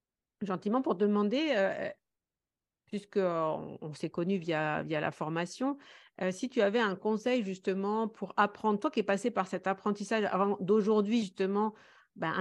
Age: 50-69